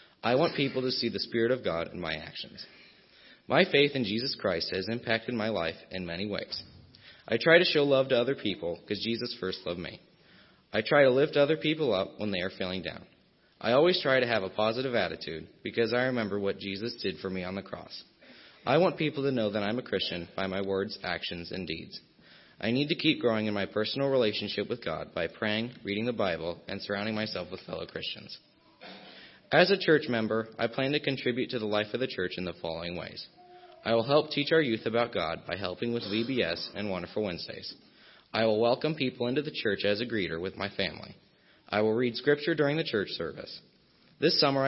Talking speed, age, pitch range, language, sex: 215 wpm, 30-49, 100-135 Hz, English, male